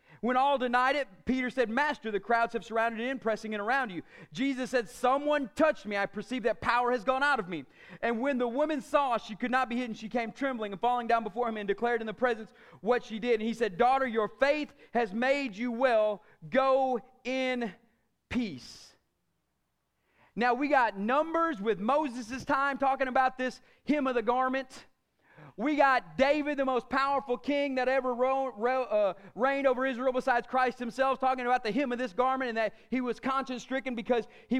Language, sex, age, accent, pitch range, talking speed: English, male, 30-49, American, 230-270 Hz, 195 wpm